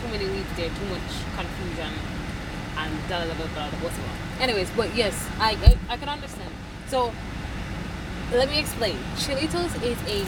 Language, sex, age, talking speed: English, female, 20-39, 140 wpm